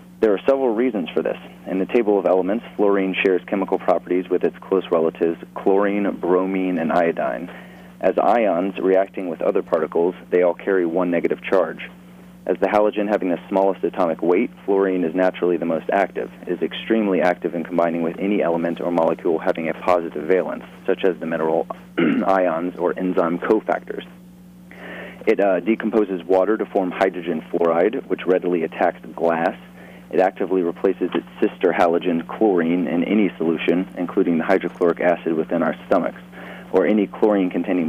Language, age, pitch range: English, 40-59, 80-95 Hz